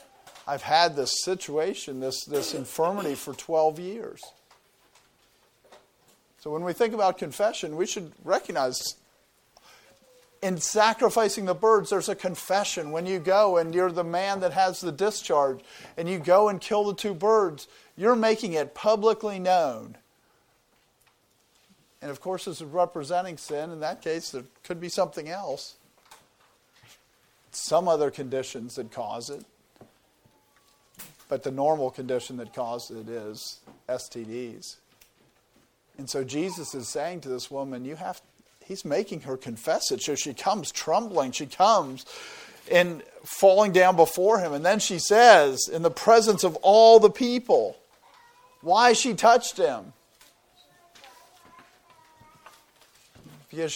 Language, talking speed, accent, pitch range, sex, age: English, 135 wpm, American, 150-210 Hz, male, 50-69